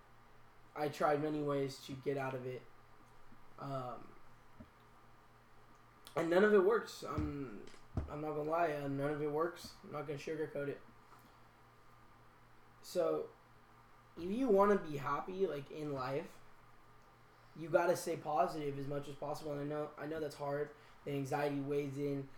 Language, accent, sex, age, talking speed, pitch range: English, American, male, 10-29, 150 wpm, 135-160 Hz